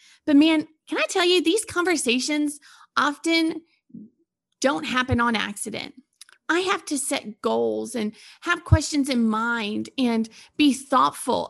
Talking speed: 135 wpm